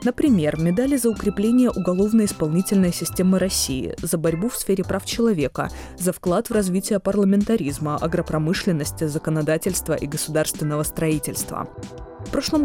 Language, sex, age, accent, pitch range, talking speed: Russian, female, 20-39, native, 155-210 Hz, 120 wpm